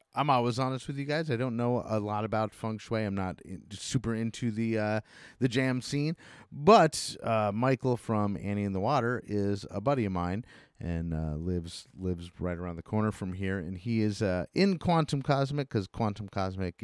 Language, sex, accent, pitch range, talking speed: English, male, American, 90-125 Hz, 205 wpm